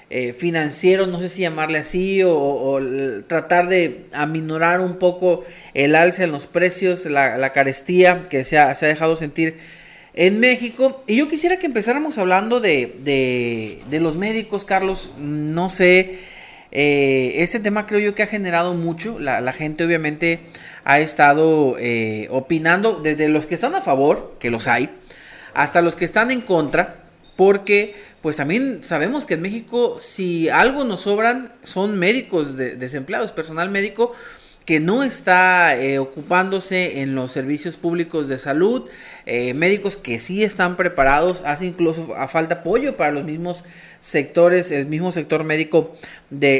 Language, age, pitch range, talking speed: Spanish, 40-59, 145-185 Hz, 160 wpm